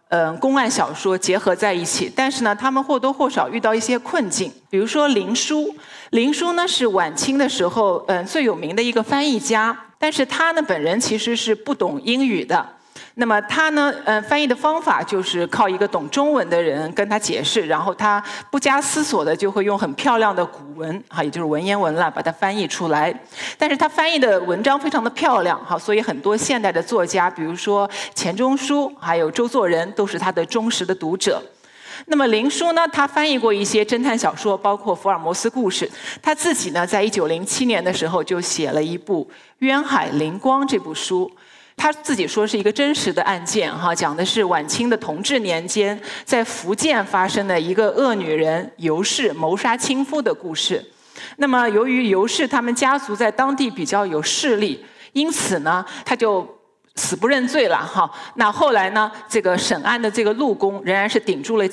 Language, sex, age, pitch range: Chinese, male, 50-69, 190-270 Hz